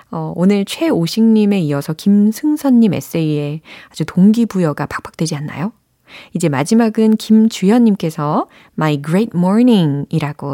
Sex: female